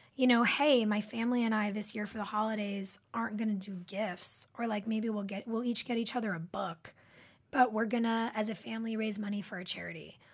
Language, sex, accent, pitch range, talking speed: English, female, American, 205-240 Hz, 240 wpm